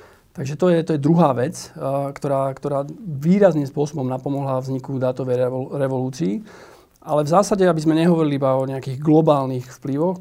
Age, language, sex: 40-59, Slovak, male